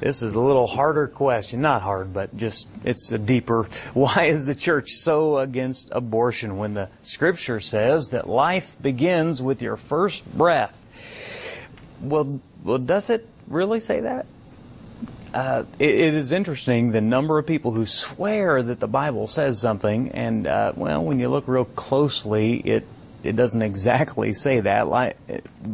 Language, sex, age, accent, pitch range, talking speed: English, male, 30-49, American, 115-145 Hz, 160 wpm